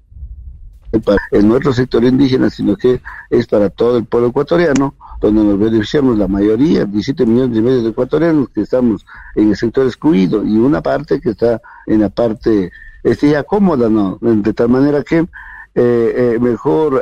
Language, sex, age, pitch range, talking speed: Spanish, male, 50-69, 115-150 Hz, 170 wpm